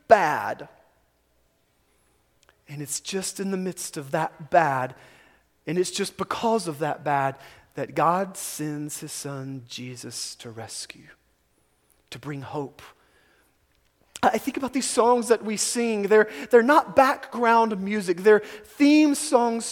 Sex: male